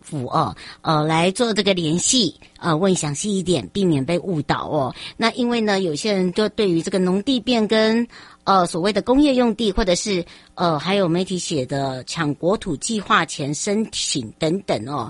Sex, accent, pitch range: male, American, 165-220 Hz